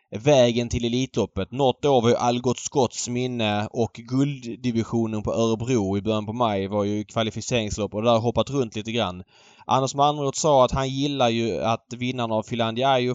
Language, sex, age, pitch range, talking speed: Swedish, male, 20-39, 105-130 Hz, 180 wpm